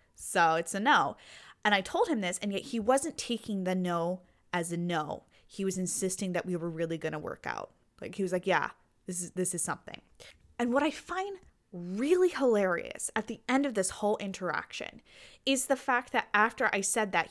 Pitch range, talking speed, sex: 175-225 Hz, 210 wpm, female